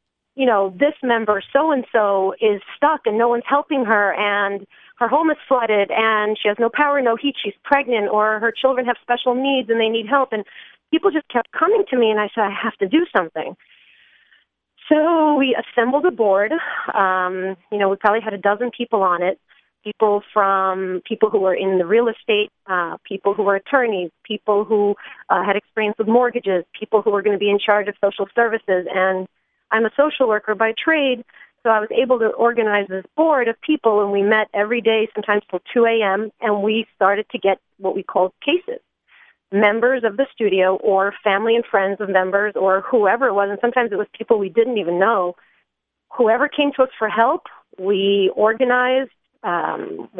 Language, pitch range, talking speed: English, 200-250 Hz, 200 wpm